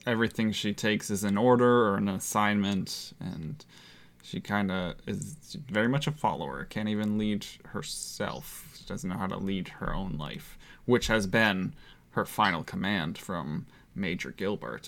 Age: 20-39